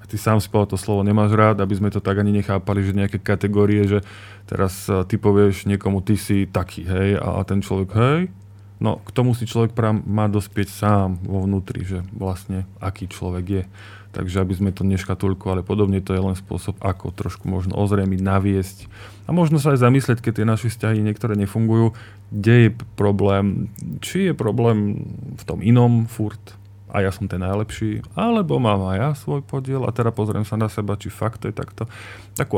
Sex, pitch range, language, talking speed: male, 95-110 Hz, Slovak, 190 wpm